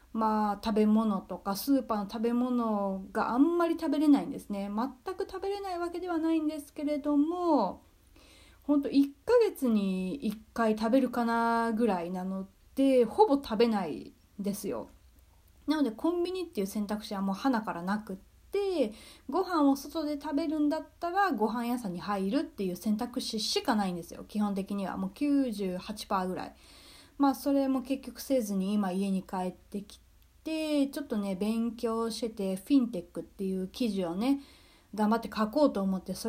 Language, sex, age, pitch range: Japanese, female, 30-49, 205-275 Hz